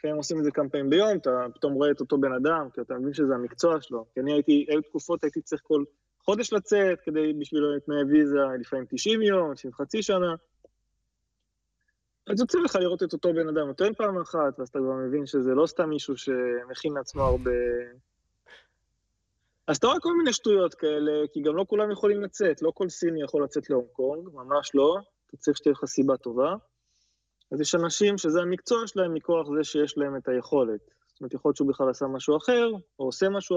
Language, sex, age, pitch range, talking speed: English, male, 20-39, 135-170 Hz, 190 wpm